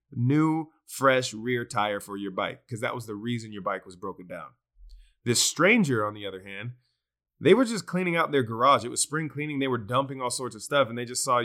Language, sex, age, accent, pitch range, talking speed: English, male, 20-39, American, 115-135 Hz, 235 wpm